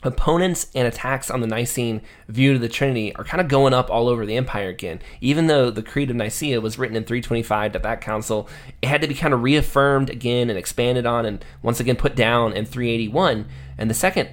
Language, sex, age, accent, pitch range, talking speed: English, male, 20-39, American, 110-130 Hz, 230 wpm